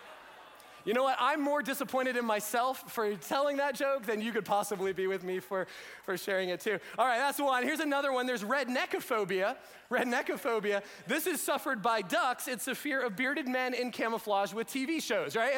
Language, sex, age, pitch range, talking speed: English, male, 30-49, 220-275 Hz, 195 wpm